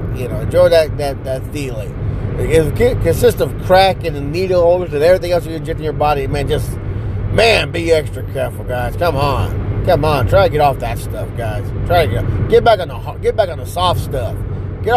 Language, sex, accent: English, male, American